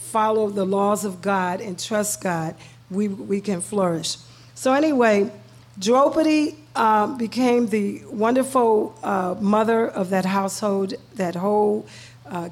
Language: English